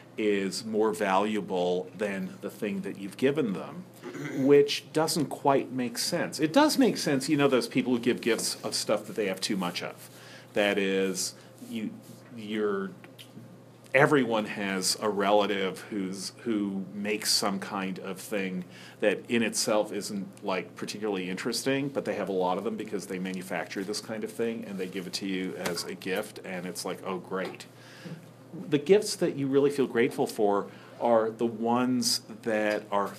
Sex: male